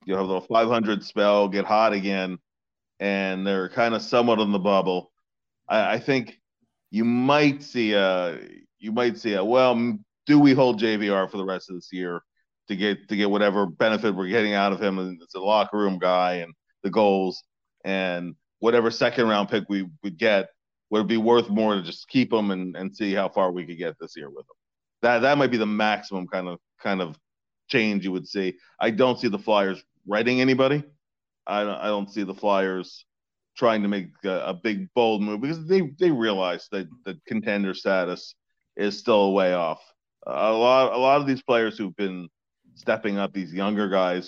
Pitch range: 95-115 Hz